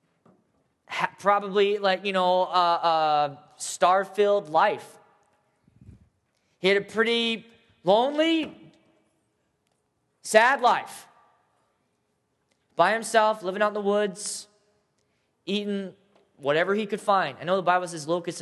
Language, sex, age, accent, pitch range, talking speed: English, male, 20-39, American, 170-225 Hz, 110 wpm